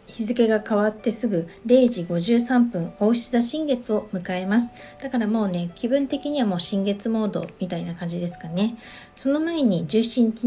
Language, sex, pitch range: Japanese, female, 195-275 Hz